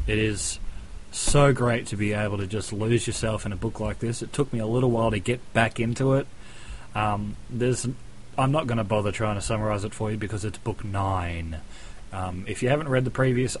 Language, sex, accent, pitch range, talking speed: English, male, Australian, 100-115 Hz, 225 wpm